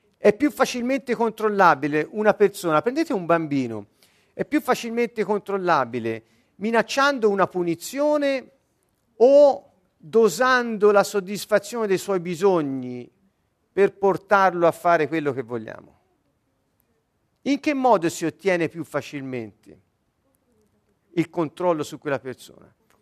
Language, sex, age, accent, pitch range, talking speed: Italian, male, 50-69, native, 155-225 Hz, 110 wpm